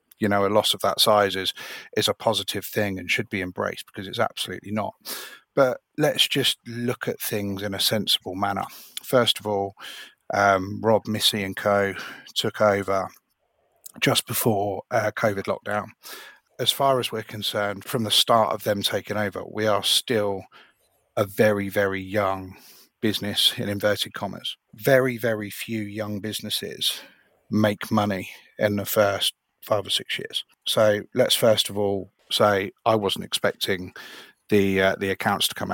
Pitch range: 100-110 Hz